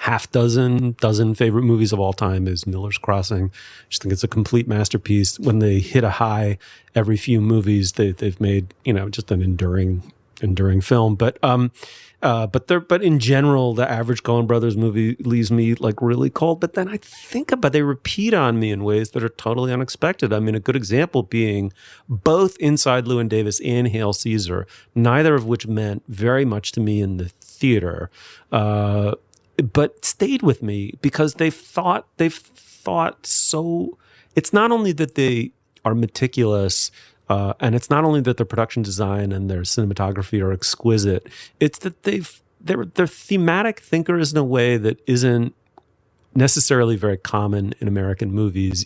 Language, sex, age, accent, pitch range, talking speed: English, male, 30-49, American, 105-130 Hz, 175 wpm